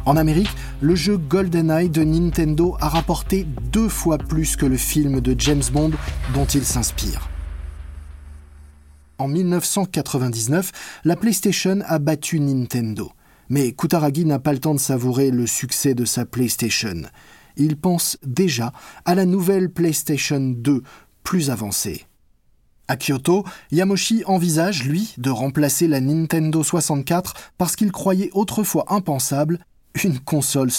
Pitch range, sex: 120-170 Hz, male